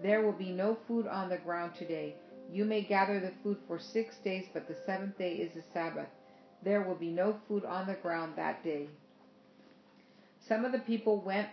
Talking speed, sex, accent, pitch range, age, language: 205 wpm, female, American, 170-210 Hz, 50-69, English